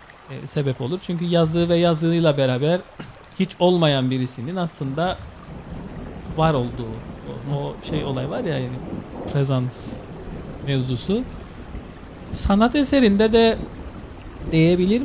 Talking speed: 110 wpm